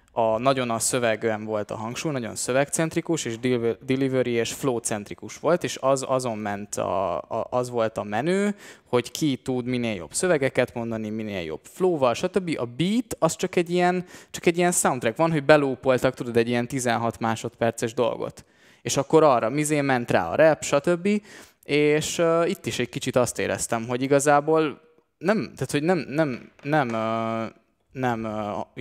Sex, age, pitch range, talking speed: male, 20-39, 115-145 Hz, 170 wpm